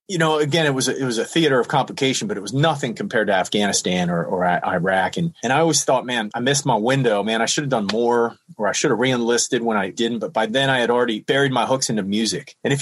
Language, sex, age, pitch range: English, male, 30-49, 115-145 Hz